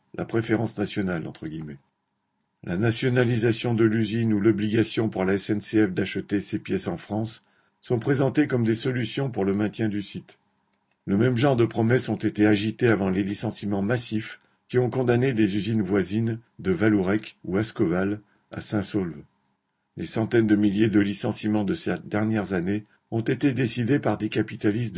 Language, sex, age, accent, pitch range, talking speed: French, male, 50-69, French, 105-120 Hz, 170 wpm